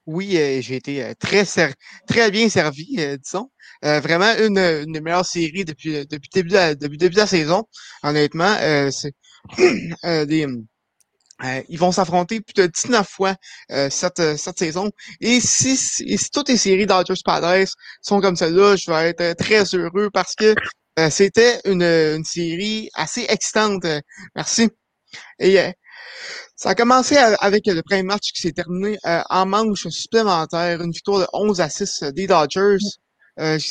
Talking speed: 175 wpm